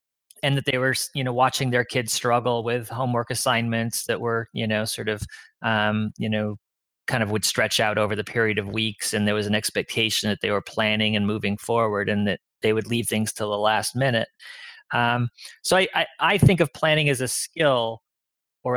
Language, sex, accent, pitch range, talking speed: English, male, American, 110-135 Hz, 210 wpm